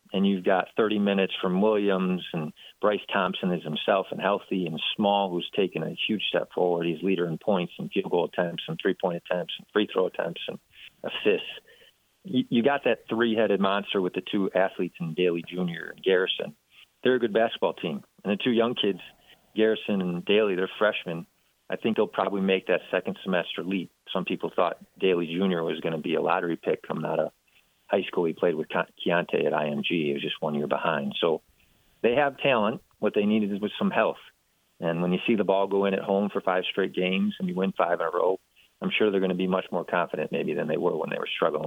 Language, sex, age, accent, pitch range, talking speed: English, male, 40-59, American, 90-110 Hz, 220 wpm